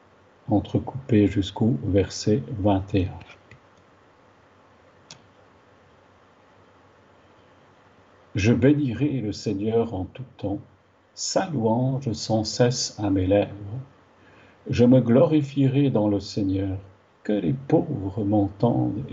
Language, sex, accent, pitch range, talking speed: French, male, French, 100-125 Hz, 90 wpm